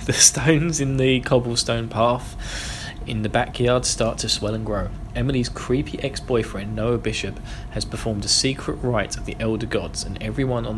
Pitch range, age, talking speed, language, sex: 105-130 Hz, 20-39, 175 wpm, English, male